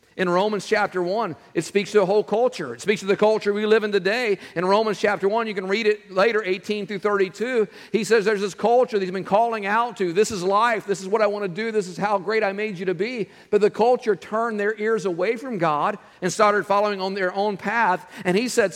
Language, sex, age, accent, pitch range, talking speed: English, male, 50-69, American, 180-220 Hz, 255 wpm